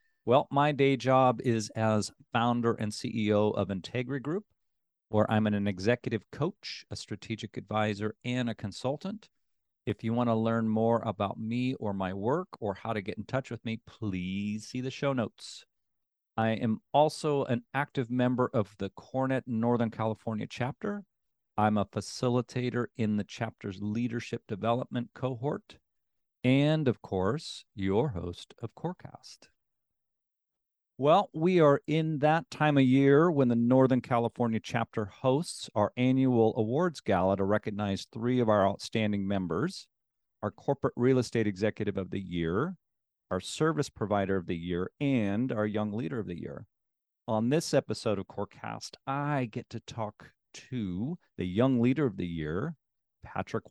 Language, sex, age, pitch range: English, male, 40-59, 105-130 Hz